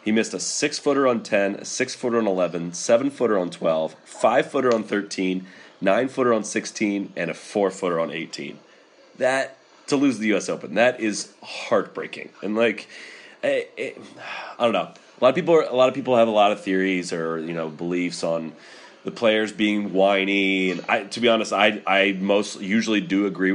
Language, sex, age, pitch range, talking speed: English, male, 30-49, 95-120 Hz, 205 wpm